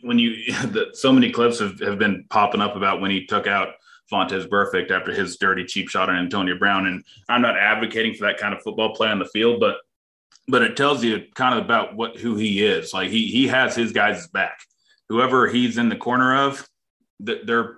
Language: English